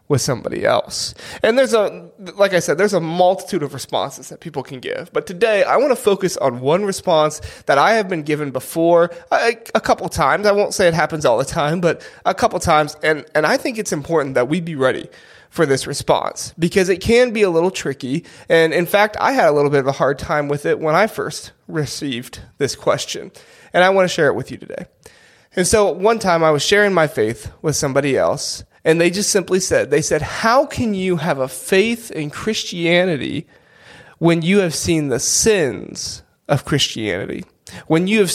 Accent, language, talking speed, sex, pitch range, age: American, English, 215 wpm, male, 150-205 Hz, 30-49